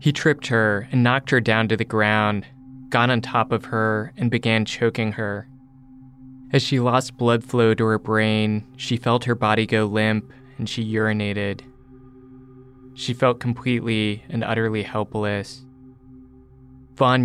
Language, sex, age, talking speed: English, male, 20-39, 150 wpm